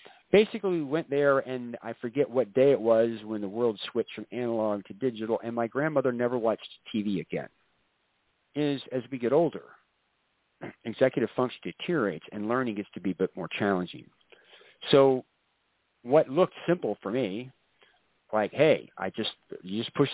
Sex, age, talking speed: male, 40-59, 165 wpm